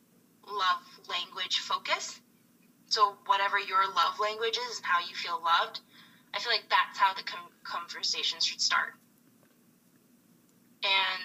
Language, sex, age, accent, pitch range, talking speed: English, female, 20-39, American, 205-340 Hz, 135 wpm